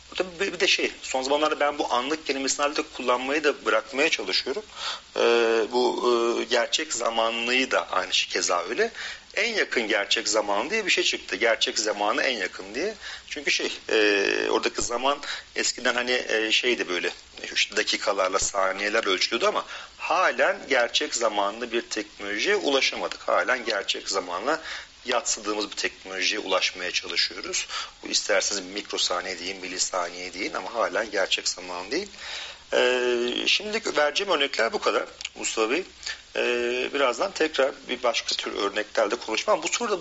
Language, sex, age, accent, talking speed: Turkish, male, 40-59, native, 140 wpm